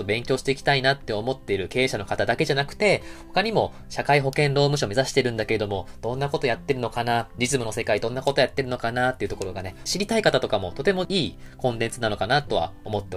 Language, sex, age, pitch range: Japanese, male, 20-39, 105-140 Hz